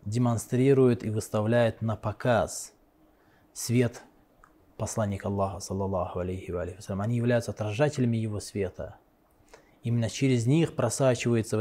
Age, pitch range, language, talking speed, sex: 20-39, 105-125 Hz, Russian, 120 wpm, male